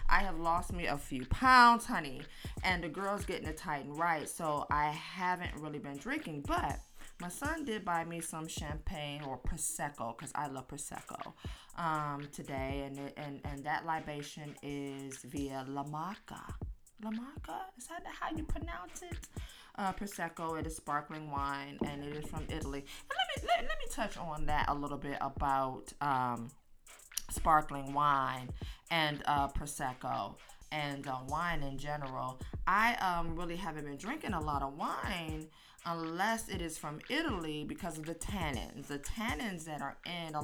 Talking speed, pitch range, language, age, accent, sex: 170 wpm, 140-170 Hz, English, 20-39, American, female